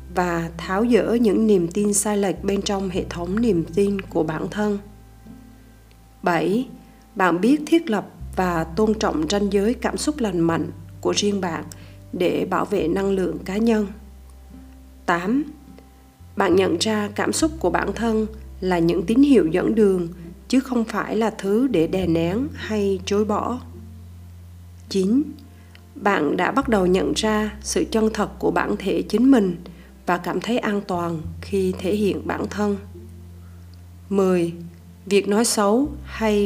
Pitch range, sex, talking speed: 150-215 Hz, female, 160 wpm